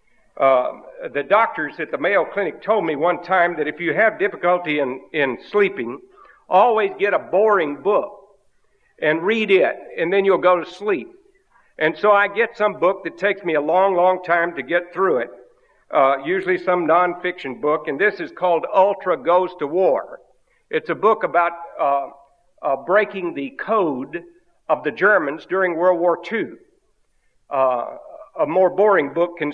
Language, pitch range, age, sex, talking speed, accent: English, 165-210 Hz, 60-79, male, 175 wpm, American